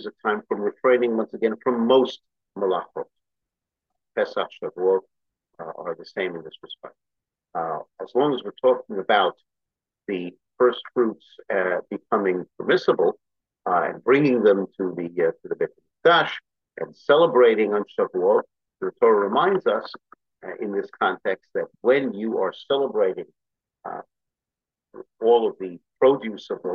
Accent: American